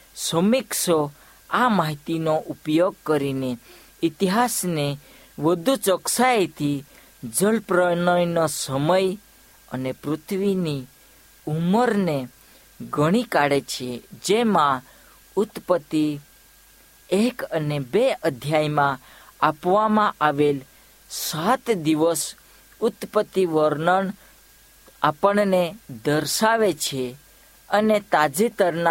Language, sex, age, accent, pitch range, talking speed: Hindi, female, 50-69, native, 145-205 Hz, 60 wpm